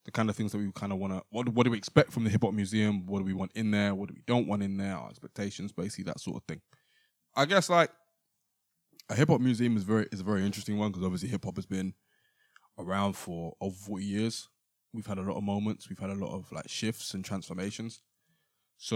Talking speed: 245 wpm